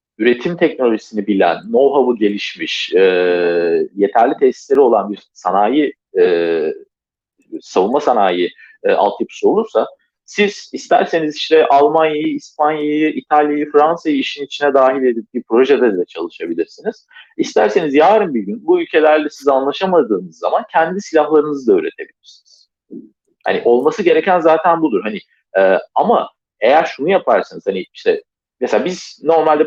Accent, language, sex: native, Turkish, male